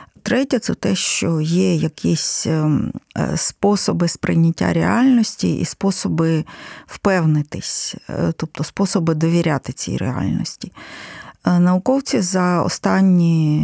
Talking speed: 90 wpm